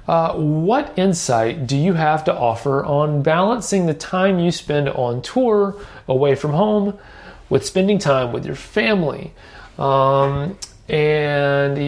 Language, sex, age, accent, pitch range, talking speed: English, male, 30-49, American, 130-165 Hz, 135 wpm